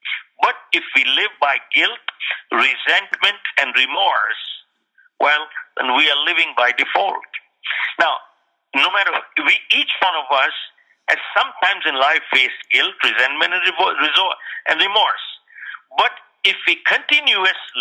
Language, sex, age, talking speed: English, male, 50-69, 130 wpm